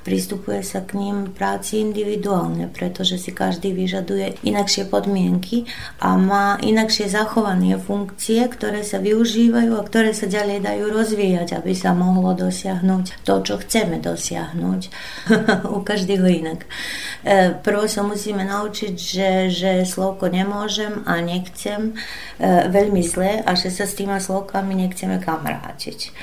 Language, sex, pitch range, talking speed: Slovak, female, 175-200 Hz, 135 wpm